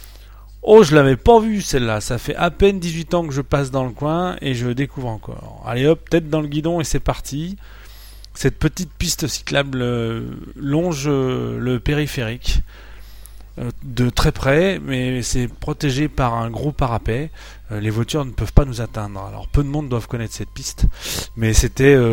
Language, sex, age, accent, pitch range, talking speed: French, male, 30-49, French, 110-165 Hz, 175 wpm